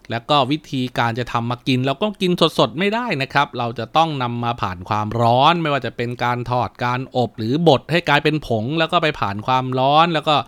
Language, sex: Thai, male